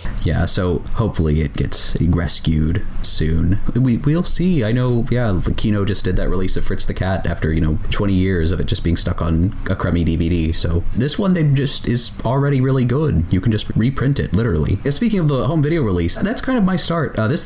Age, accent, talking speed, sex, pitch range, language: 30-49, American, 225 wpm, male, 80-105 Hz, English